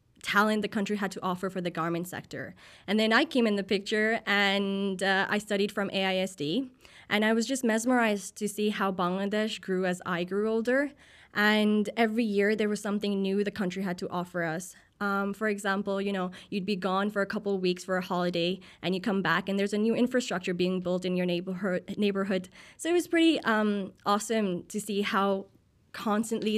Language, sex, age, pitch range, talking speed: English, female, 20-39, 185-215 Hz, 210 wpm